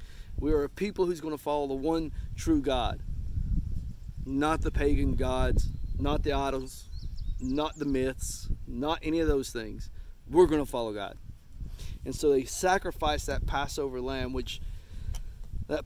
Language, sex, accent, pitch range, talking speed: English, male, American, 110-160 Hz, 160 wpm